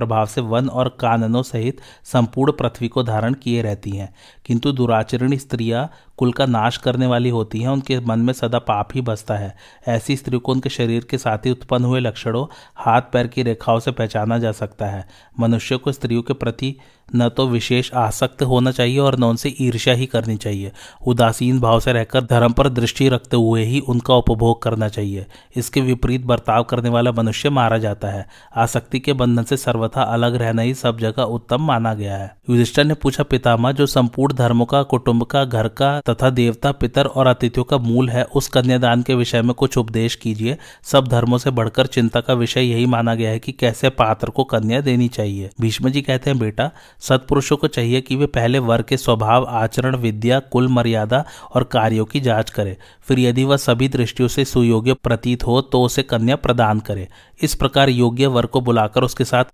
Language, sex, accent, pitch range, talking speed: Hindi, male, native, 115-130 Hz, 175 wpm